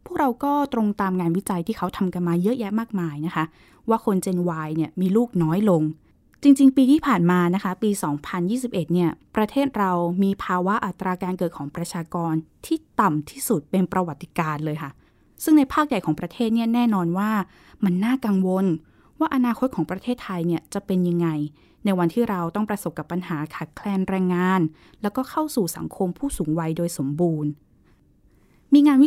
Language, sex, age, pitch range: Thai, female, 20-39, 170-225 Hz